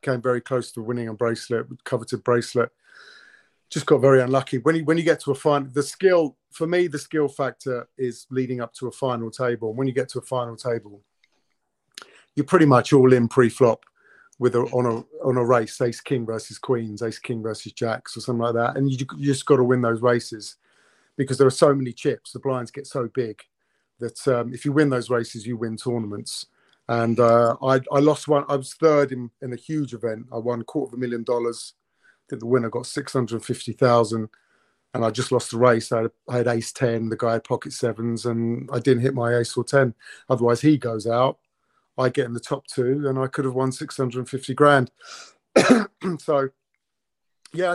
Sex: male